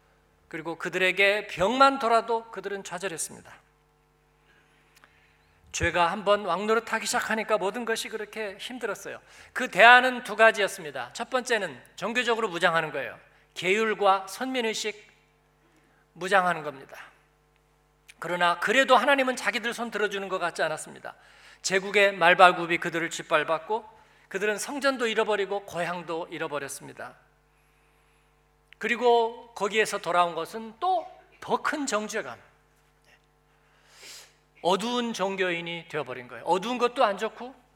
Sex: male